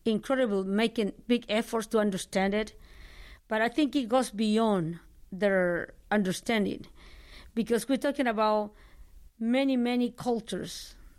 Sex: female